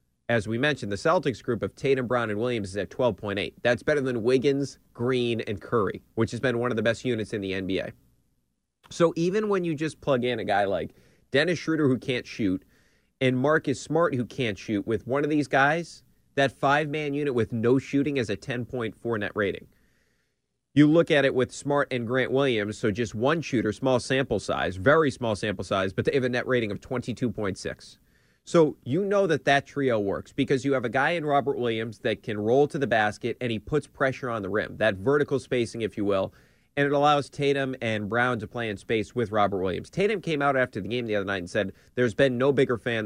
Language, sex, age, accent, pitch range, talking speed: English, male, 30-49, American, 110-140 Hz, 225 wpm